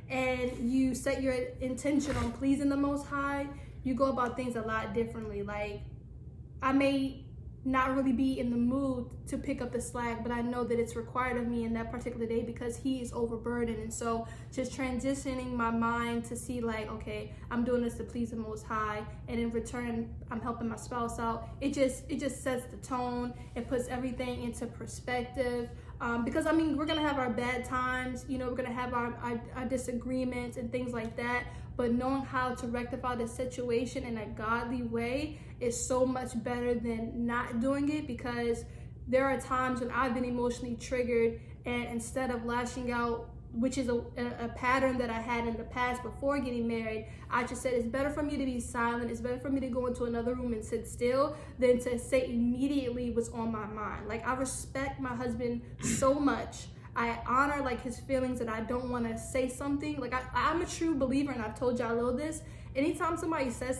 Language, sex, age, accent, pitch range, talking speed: English, female, 10-29, American, 235-260 Hz, 205 wpm